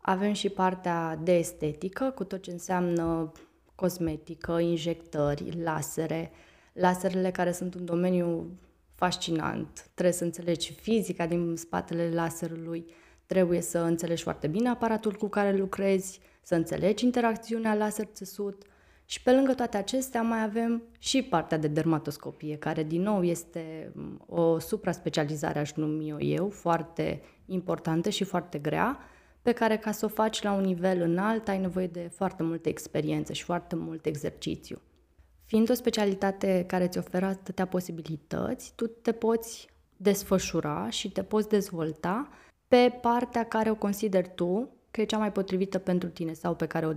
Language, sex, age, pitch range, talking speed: Romanian, female, 20-39, 165-210 Hz, 150 wpm